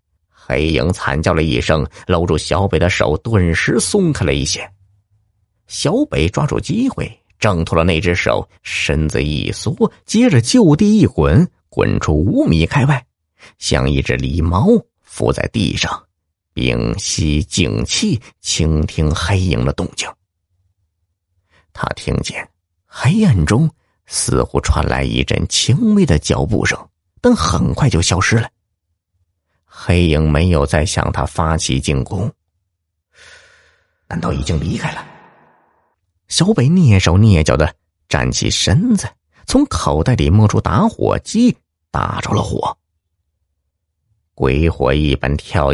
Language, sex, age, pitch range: Chinese, male, 50-69, 80-100 Hz